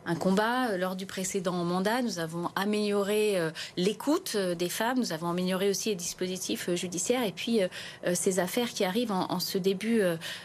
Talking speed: 200 wpm